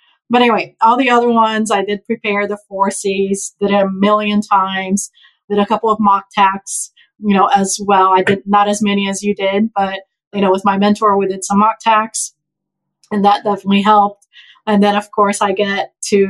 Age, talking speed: 30-49, 210 wpm